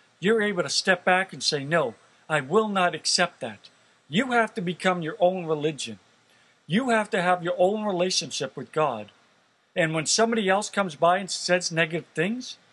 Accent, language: American, English